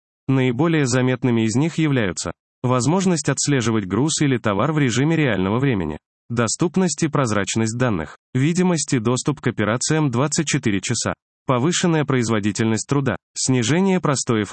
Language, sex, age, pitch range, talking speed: Russian, male, 20-39, 110-150 Hz, 125 wpm